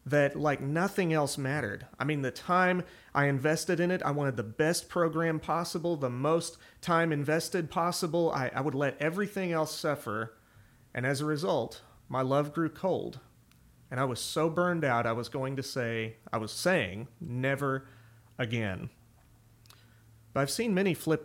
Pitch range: 130-185 Hz